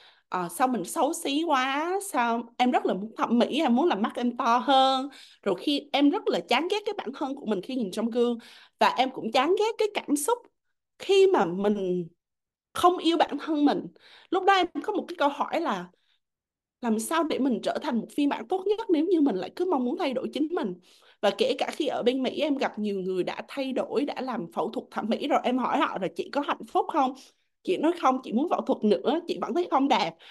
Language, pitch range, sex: Vietnamese, 220-325 Hz, female